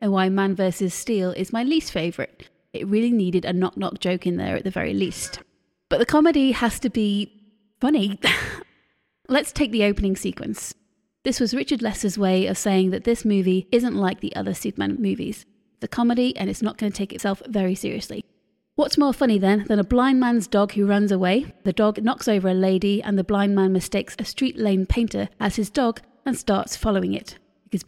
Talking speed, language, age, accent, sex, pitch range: 200 wpm, English, 30-49, British, female, 195-230 Hz